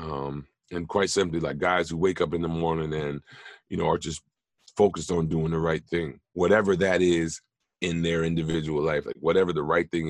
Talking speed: 210 wpm